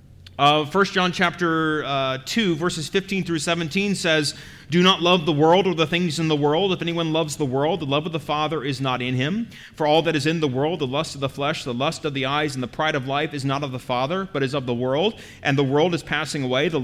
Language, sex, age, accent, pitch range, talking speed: English, male, 30-49, American, 150-200 Hz, 265 wpm